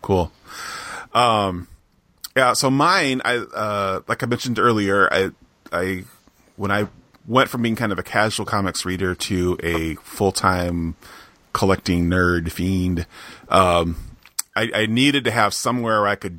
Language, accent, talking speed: English, American, 150 wpm